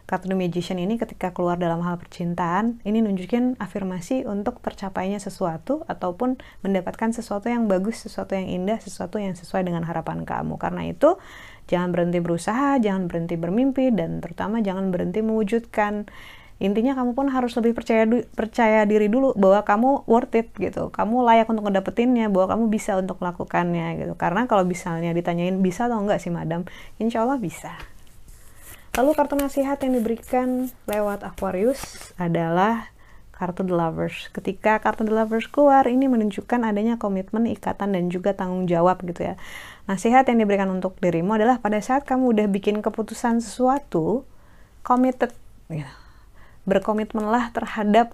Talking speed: 150 wpm